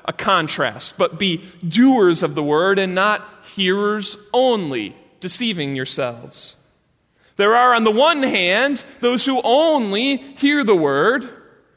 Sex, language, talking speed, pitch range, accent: male, English, 135 wpm, 155-220 Hz, American